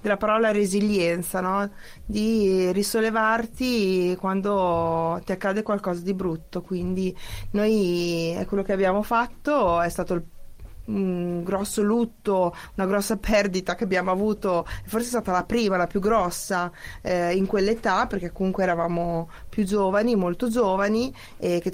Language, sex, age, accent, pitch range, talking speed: Italian, female, 20-39, native, 175-210 Hz, 145 wpm